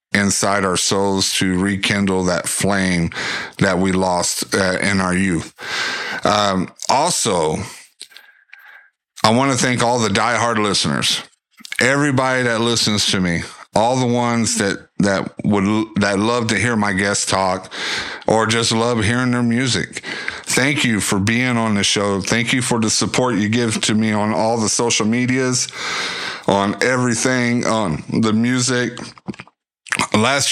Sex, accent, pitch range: male, American, 100-115 Hz